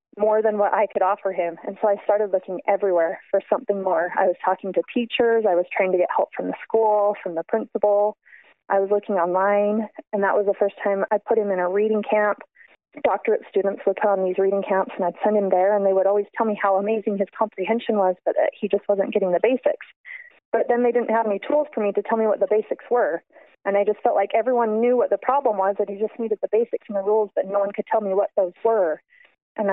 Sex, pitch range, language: female, 195-225 Hz, English